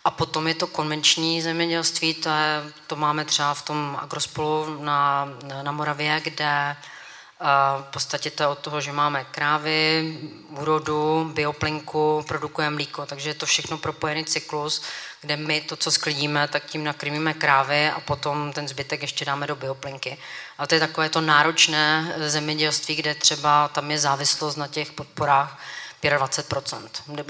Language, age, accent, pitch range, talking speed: Czech, 30-49, native, 145-155 Hz, 155 wpm